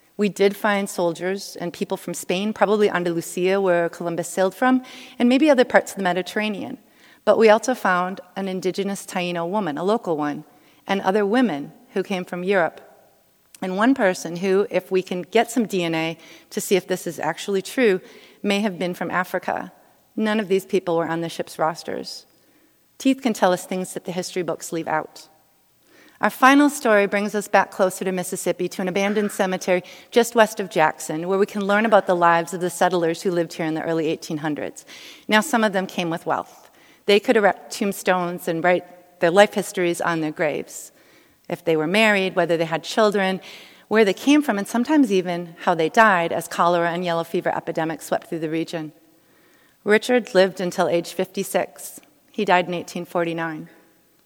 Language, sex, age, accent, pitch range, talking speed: English, female, 40-59, American, 170-205 Hz, 190 wpm